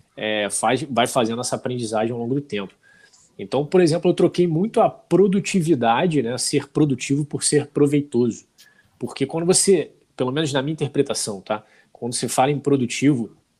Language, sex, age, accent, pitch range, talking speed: Portuguese, male, 20-39, Brazilian, 110-140 Hz, 155 wpm